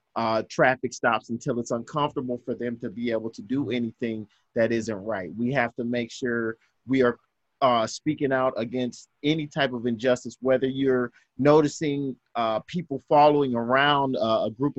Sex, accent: male, American